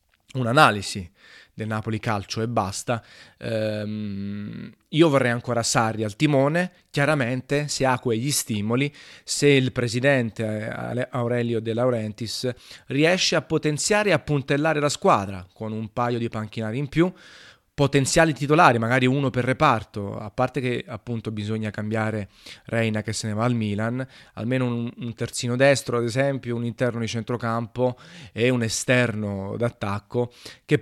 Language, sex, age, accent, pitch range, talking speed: Italian, male, 30-49, native, 110-130 Hz, 140 wpm